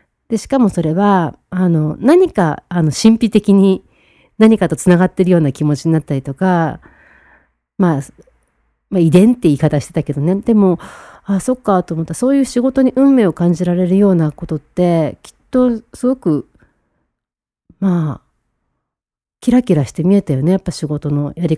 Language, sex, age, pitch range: Japanese, female, 40-59, 165-235 Hz